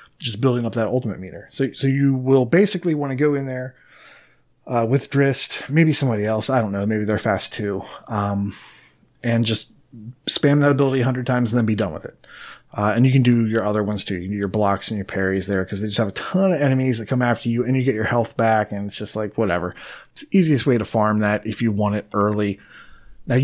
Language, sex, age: English, male, 30-49